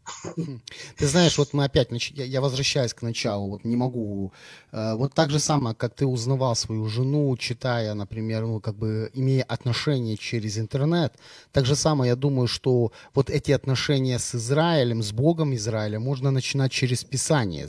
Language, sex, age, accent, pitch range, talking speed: Ukrainian, male, 30-49, native, 120-150 Hz, 155 wpm